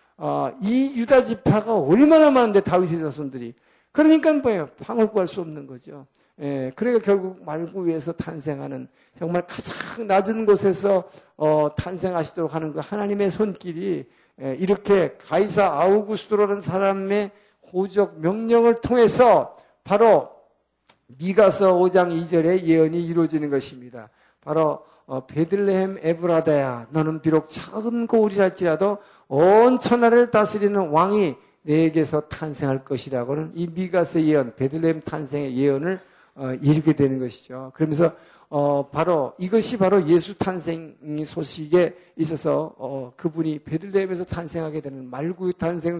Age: 50-69